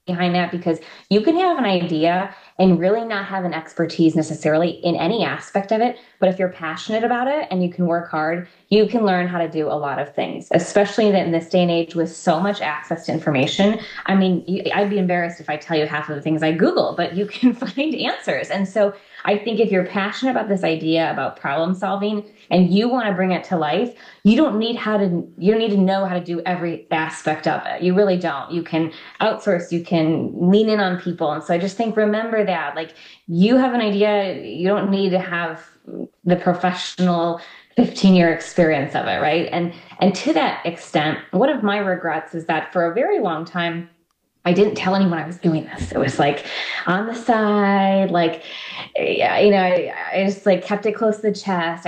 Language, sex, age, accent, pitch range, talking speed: English, female, 20-39, American, 170-210 Hz, 220 wpm